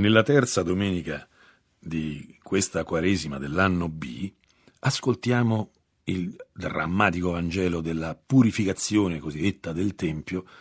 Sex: male